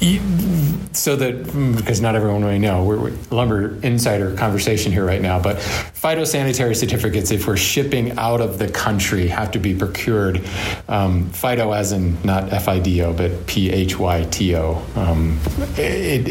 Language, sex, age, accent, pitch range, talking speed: English, male, 40-59, American, 95-115 Hz, 145 wpm